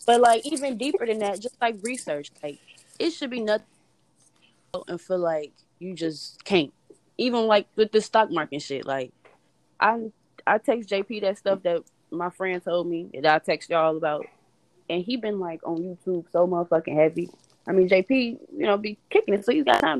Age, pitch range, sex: 20-39, 160-210 Hz, female